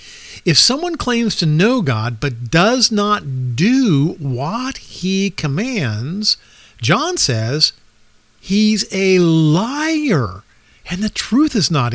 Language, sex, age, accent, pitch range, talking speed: English, male, 50-69, American, 130-215 Hz, 115 wpm